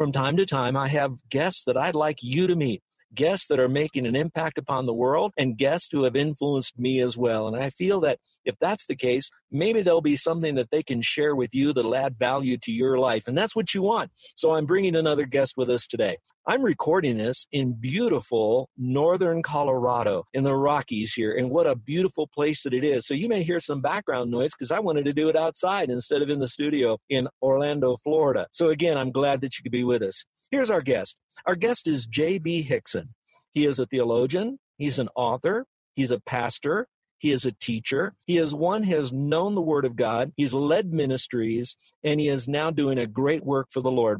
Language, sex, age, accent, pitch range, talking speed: English, male, 50-69, American, 125-160 Hz, 225 wpm